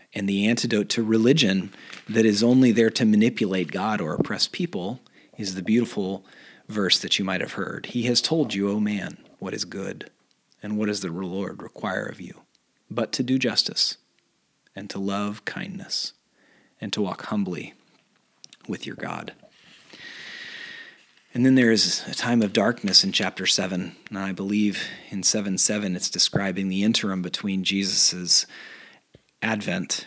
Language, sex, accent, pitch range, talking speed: English, male, American, 100-125 Hz, 160 wpm